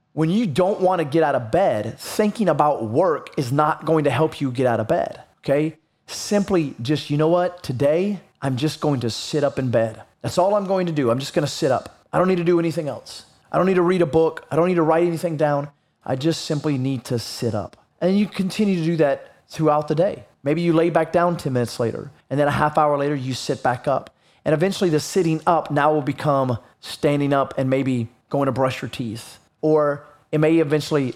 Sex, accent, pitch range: male, American, 140-170 Hz